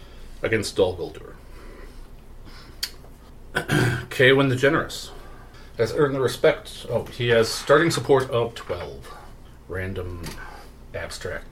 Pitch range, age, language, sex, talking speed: 100-135 Hz, 40-59, English, male, 95 wpm